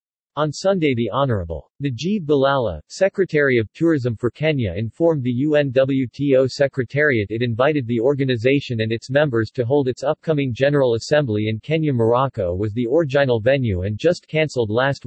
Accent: American